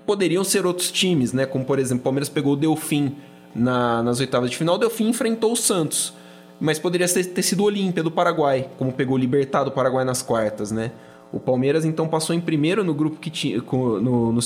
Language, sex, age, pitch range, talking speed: Portuguese, male, 20-39, 120-155 Hz, 215 wpm